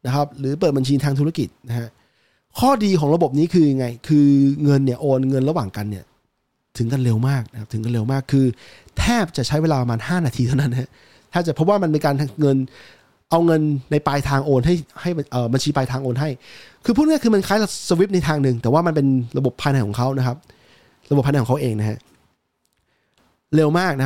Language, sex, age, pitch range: English, male, 20-39, 130-170 Hz